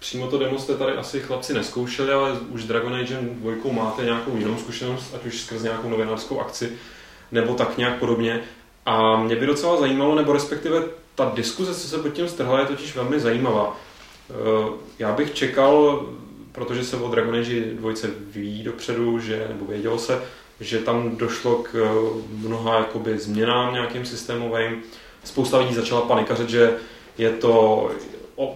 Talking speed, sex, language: 160 wpm, male, Czech